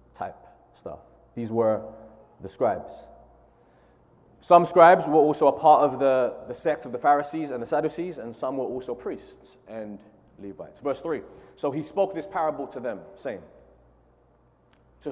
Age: 30-49